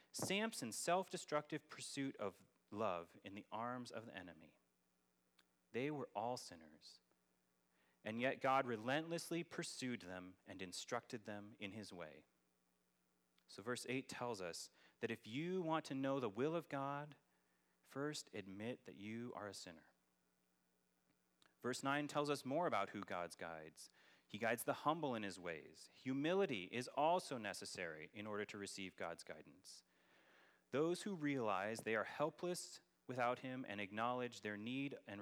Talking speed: 150 wpm